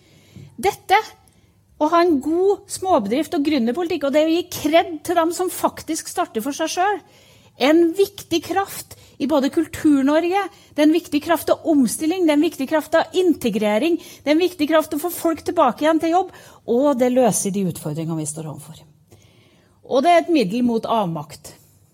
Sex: female